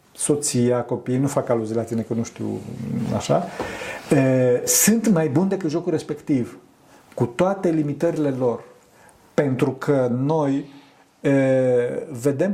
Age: 50-69